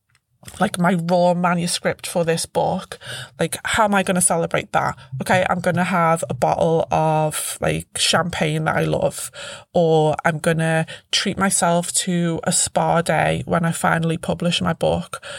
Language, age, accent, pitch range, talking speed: English, 20-39, British, 165-190 Hz, 160 wpm